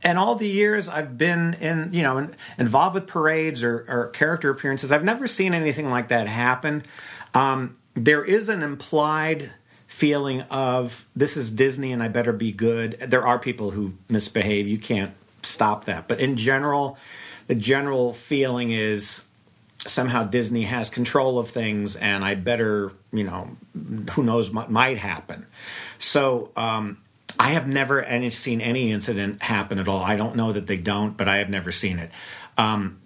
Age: 40-59